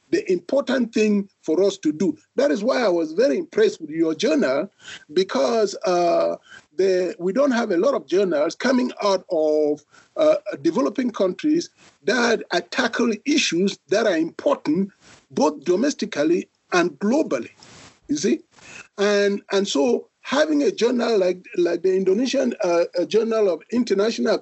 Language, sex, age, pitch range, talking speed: English, male, 50-69, 195-305 Hz, 145 wpm